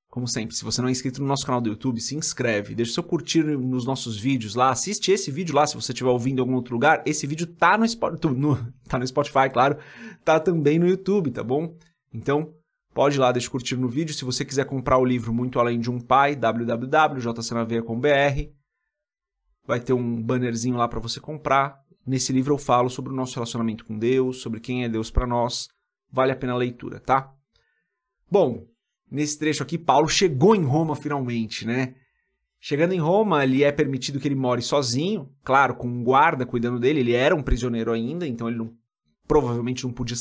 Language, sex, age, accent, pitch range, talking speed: Portuguese, male, 30-49, Brazilian, 120-155 Hz, 205 wpm